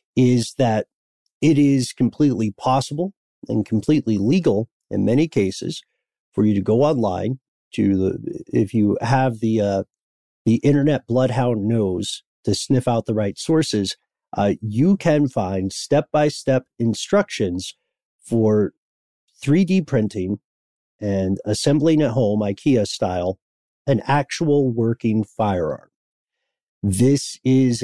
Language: English